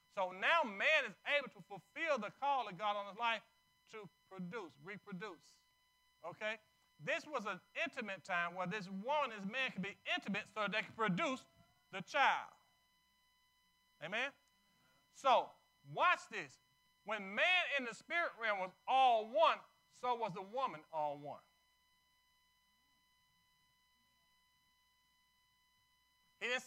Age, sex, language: 40-59, male, English